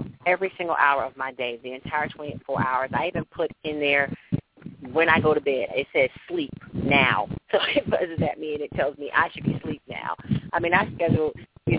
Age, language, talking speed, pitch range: 40-59, English, 220 wpm, 140-170 Hz